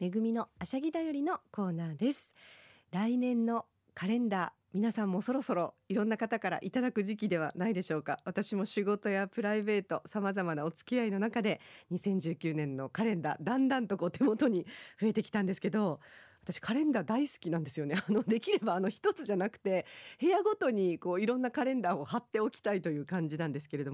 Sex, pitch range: female, 165-240 Hz